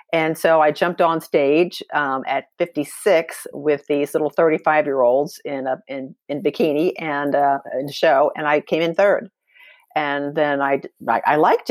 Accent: American